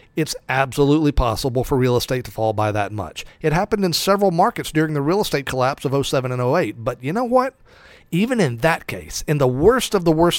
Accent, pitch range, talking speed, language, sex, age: American, 125-175 Hz, 225 wpm, English, male, 40-59